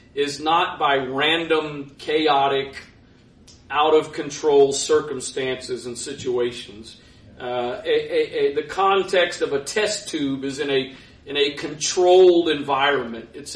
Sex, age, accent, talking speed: male, 40-59, American, 120 wpm